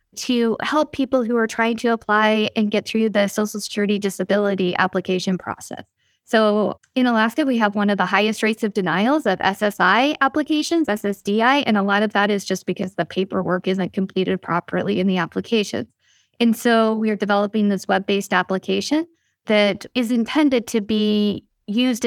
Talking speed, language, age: 170 wpm, English, 20-39